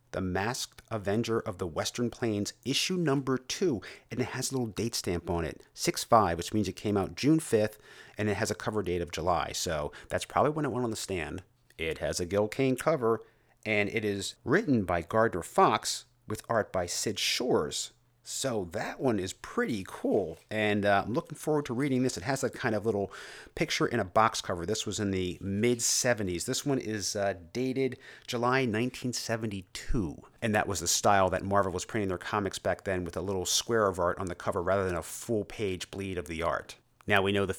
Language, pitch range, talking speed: English, 100-125 Hz, 210 wpm